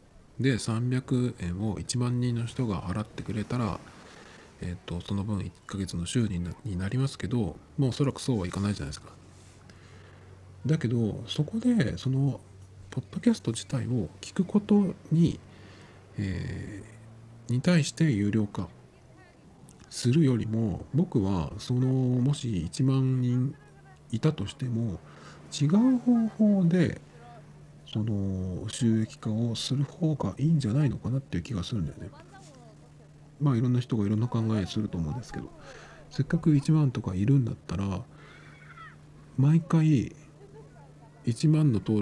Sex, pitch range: male, 100-140 Hz